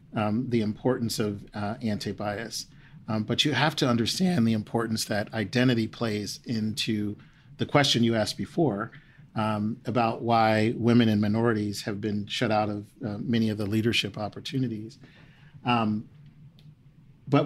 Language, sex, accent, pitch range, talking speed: English, male, American, 110-125 Hz, 145 wpm